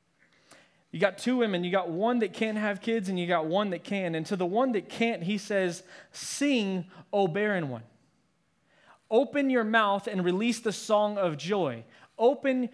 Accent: American